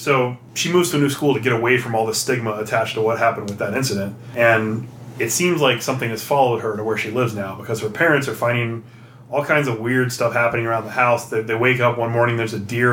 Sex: male